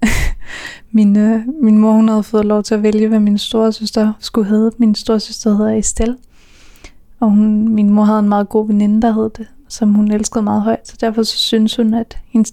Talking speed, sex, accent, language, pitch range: 215 wpm, female, native, Danish, 215-235 Hz